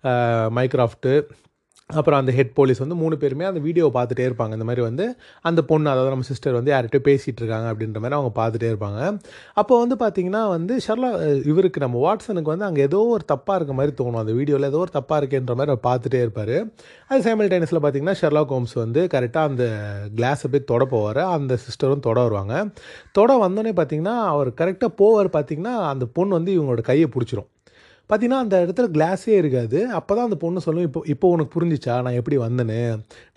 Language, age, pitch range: Tamil, 30-49, 120-165 Hz